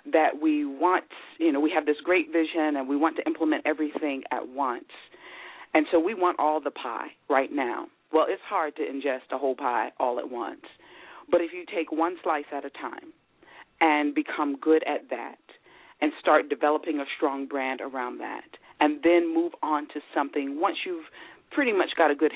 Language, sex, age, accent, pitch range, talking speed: English, female, 40-59, American, 140-175 Hz, 195 wpm